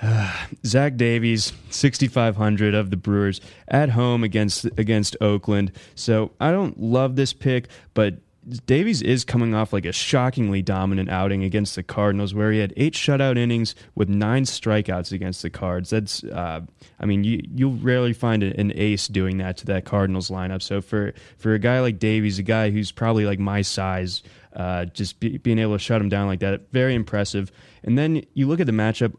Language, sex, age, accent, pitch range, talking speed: English, male, 20-39, American, 100-115 Hz, 195 wpm